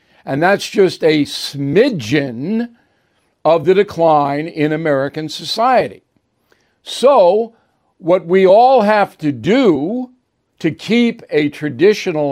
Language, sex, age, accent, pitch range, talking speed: English, male, 60-79, American, 150-195 Hz, 105 wpm